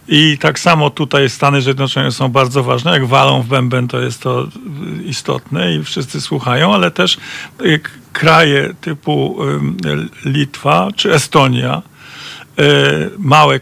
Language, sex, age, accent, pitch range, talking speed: Polish, male, 50-69, native, 135-170 Hz, 125 wpm